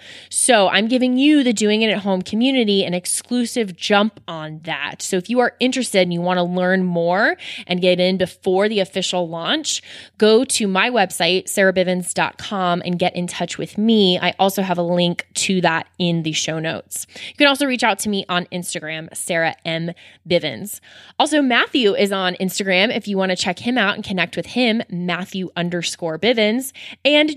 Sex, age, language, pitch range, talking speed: female, 20-39, English, 175-230 Hz, 190 wpm